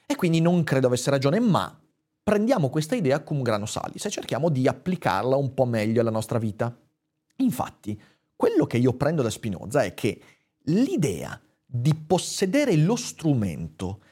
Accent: native